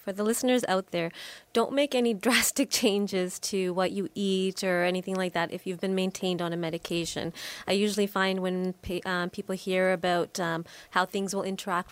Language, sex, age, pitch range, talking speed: English, female, 20-39, 175-205 Hz, 190 wpm